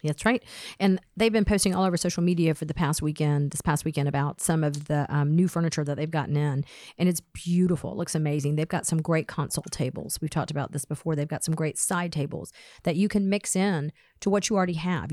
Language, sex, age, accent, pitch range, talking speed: English, female, 40-59, American, 155-195 Hz, 240 wpm